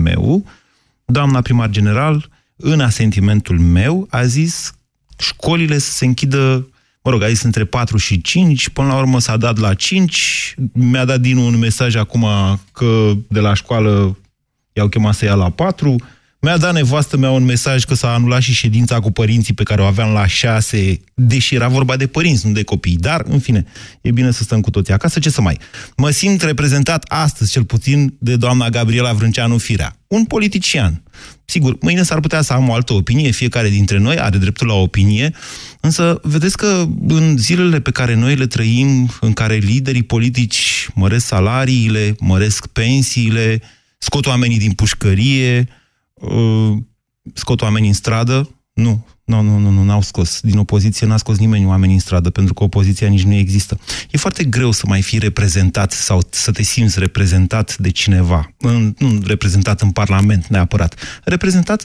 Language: Romanian